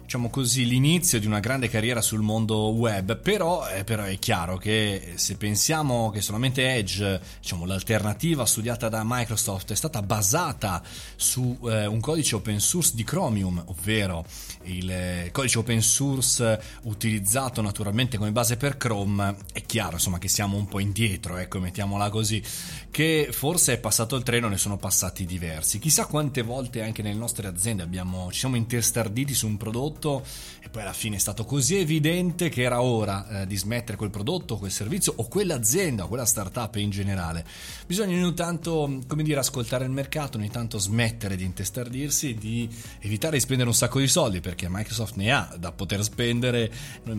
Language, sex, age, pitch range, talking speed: Italian, male, 30-49, 100-145 Hz, 175 wpm